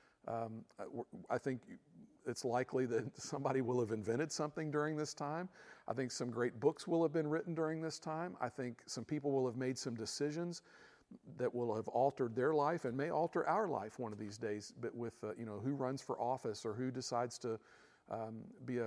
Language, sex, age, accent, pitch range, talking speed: English, male, 50-69, American, 120-165 Hz, 205 wpm